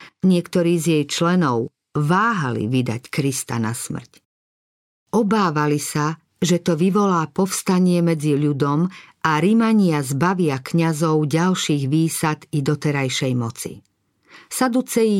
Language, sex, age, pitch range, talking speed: Slovak, female, 50-69, 145-185 Hz, 105 wpm